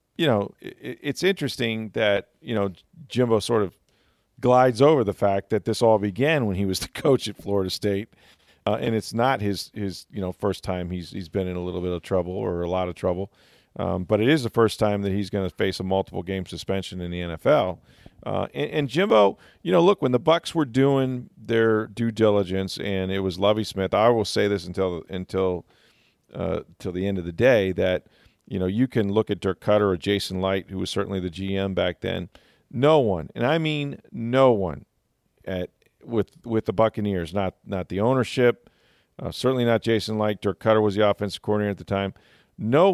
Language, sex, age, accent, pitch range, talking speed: English, male, 40-59, American, 95-110 Hz, 210 wpm